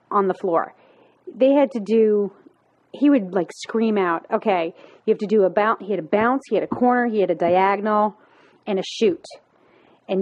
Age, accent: 30-49, American